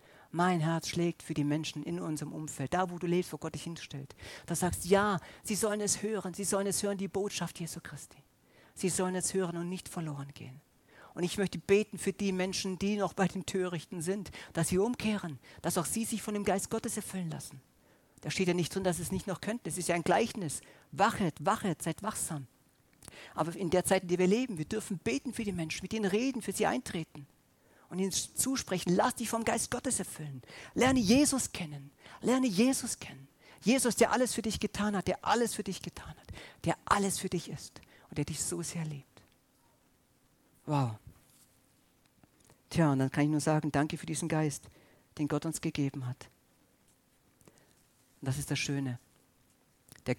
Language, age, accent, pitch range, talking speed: German, 50-69, German, 150-200 Hz, 200 wpm